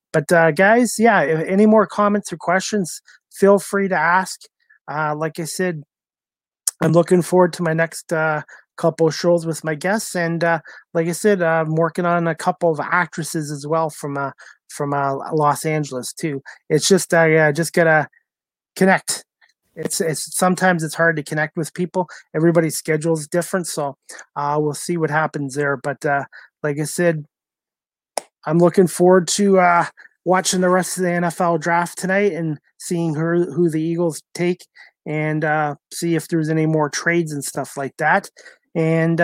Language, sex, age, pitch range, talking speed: English, male, 30-49, 155-185 Hz, 180 wpm